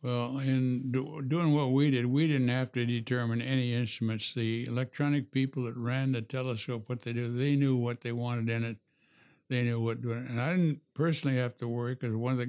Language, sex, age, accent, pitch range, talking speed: English, male, 60-79, American, 115-130 Hz, 215 wpm